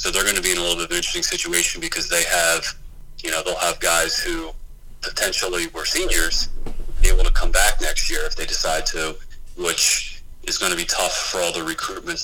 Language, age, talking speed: English, 30-49, 225 wpm